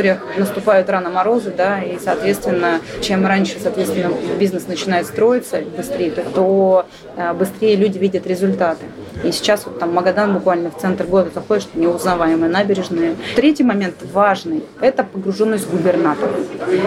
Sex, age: female, 30-49